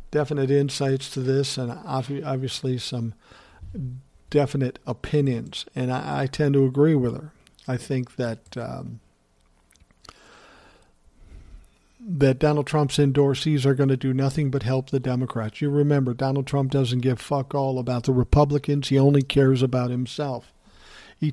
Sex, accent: male, American